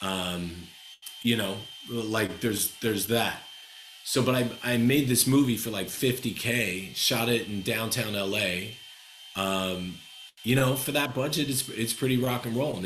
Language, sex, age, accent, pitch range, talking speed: English, male, 30-49, American, 100-130 Hz, 165 wpm